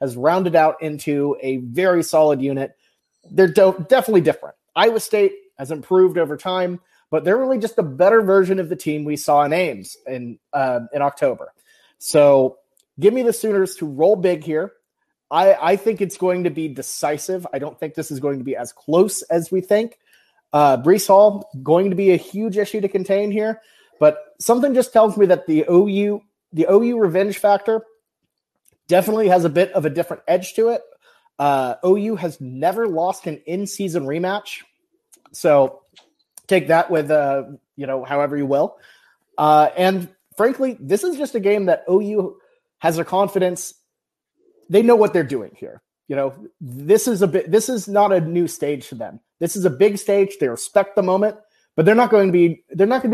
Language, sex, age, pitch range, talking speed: English, male, 30-49, 155-210 Hz, 190 wpm